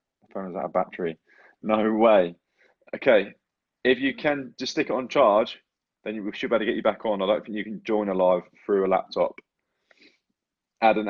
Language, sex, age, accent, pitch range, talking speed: English, male, 20-39, British, 95-110 Hz, 210 wpm